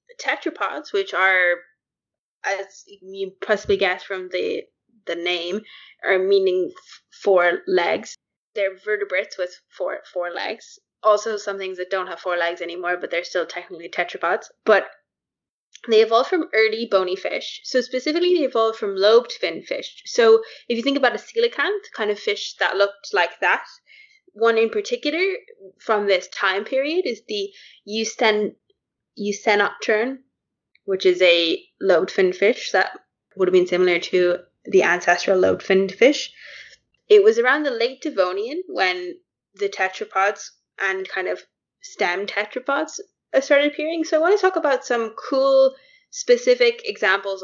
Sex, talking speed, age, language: female, 150 wpm, 20-39, English